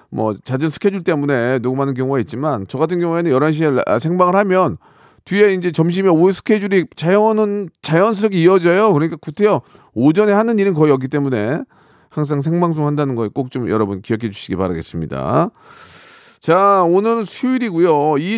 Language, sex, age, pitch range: Korean, male, 40-59, 130-185 Hz